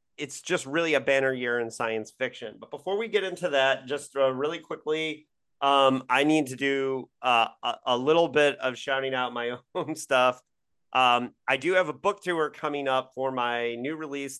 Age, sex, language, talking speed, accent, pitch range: 30-49, male, English, 200 wpm, American, 125-150 Hz